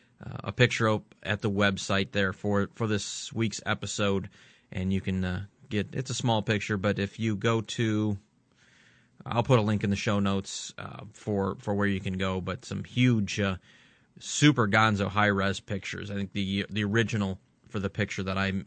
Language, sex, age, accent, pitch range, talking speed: English, male, 30-49, American, 100-115 Hz, 200 wpm